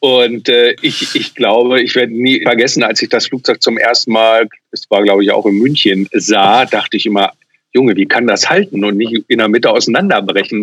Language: German